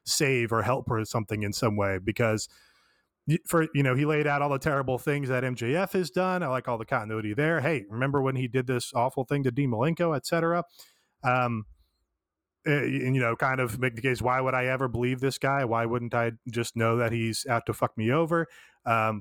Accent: American